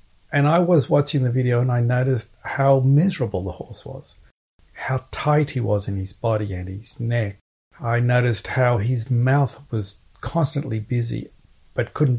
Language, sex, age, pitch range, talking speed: English, male, 50-69, 105-135 Hz, 165 wpm